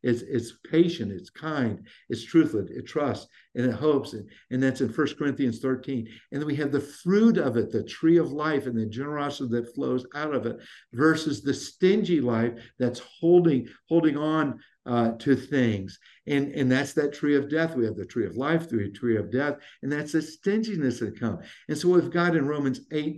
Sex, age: male, 60-79